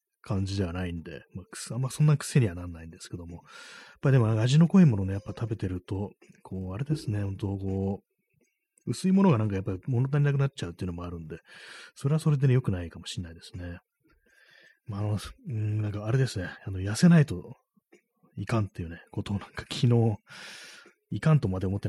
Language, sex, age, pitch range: Japanese, male, 30-49, 90-130 Hz